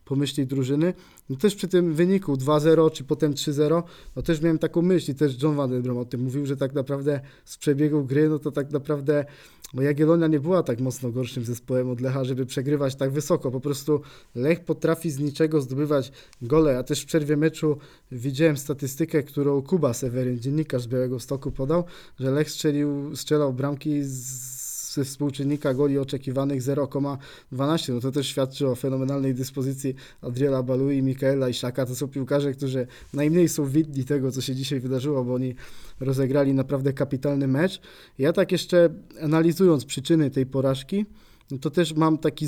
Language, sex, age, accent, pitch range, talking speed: Polish, male, 20-39, native, 135-155 Hz, 175 wpm